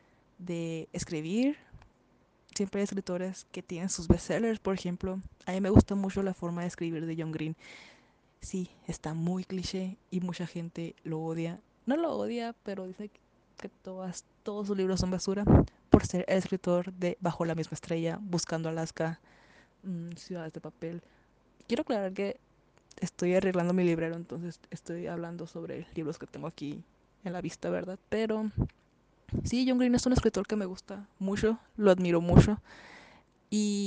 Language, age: Spanish, 20-39